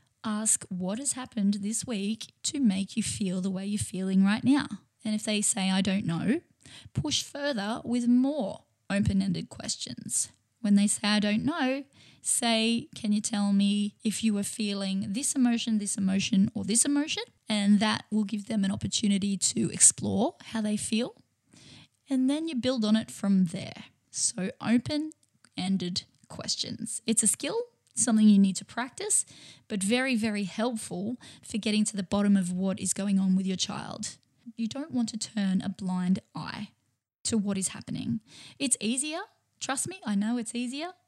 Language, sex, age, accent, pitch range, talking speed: English, female, 10-29, Australian, 200-240 Hz, 175 wpm